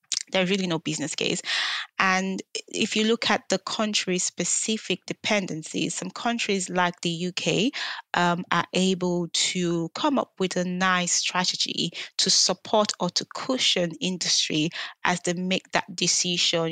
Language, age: English, 20-39